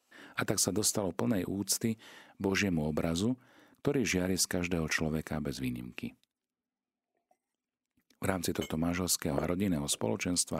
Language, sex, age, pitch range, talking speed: Slovak, male, 40-59, 80-110 Hz, 120 wpm